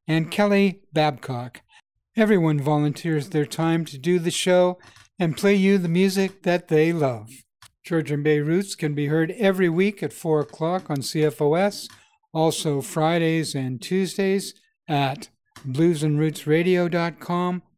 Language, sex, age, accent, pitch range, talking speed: English, male, 60-79, American, 150-185 Hz, 130 wpm